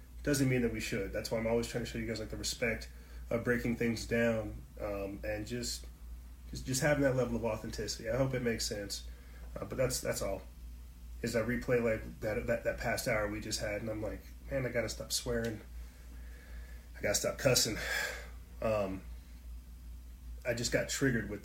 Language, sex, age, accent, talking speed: English, male, 30-49, American, 205 wpm